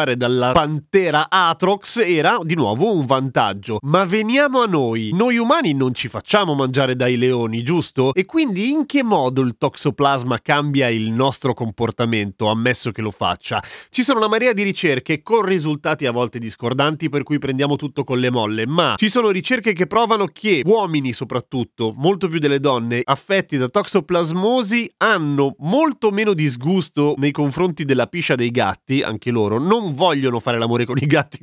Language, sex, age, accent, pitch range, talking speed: Italian, male, 30-49, native, 135-195 Hz, 170 wpm